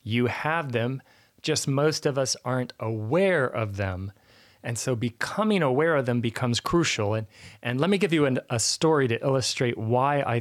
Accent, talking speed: American, 185 wpm